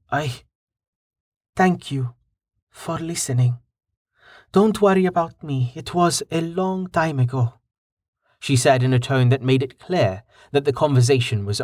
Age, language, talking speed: 30-49, English, 145 wpm